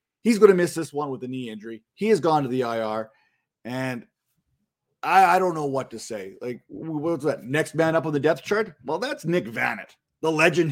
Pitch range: 120-155 Hz